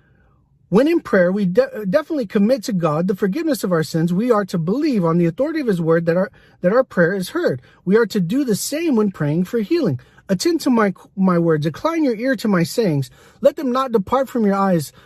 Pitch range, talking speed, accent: 170-240 Hz, 235 wpm, American